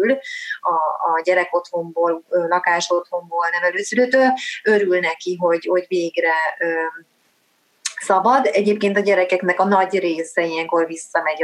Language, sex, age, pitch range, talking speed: Hungarian, female, 30-49, 170-200 Hz, 105 wpm